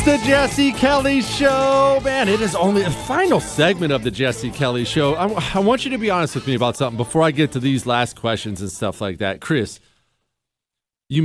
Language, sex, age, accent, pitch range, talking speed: English, male, 40-59, American, 135-205 Hz, 215 wpm